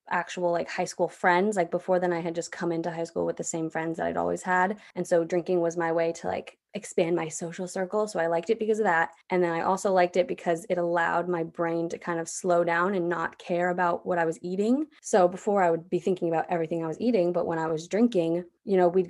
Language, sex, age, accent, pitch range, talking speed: English, female, 20-39, American, 170-195 Hz, 265 wpm